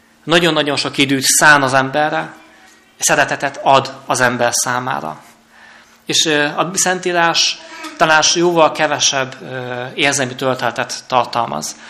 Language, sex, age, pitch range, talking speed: Hungarian, male, 30-49, 125-145 Hz, 105 wpm